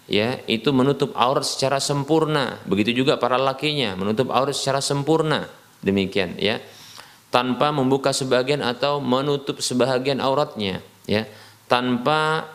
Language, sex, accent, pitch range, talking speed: Indonesian, male, native, 120-150 Hz, 120 wpm